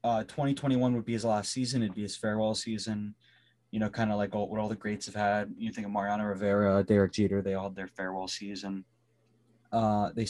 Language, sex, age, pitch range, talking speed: English, male, 20-39, 110-130 Hz, 220 wpm